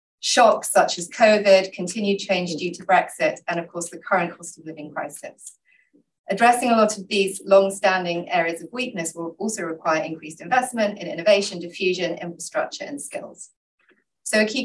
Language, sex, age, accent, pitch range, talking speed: English, female, 30-49, British, 170-210 Hz, 170 wpm